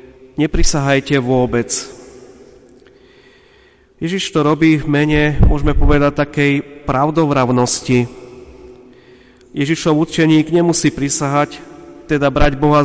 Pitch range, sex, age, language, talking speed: 135-150 Hz, male, 30-49, Slovak, 85 wpm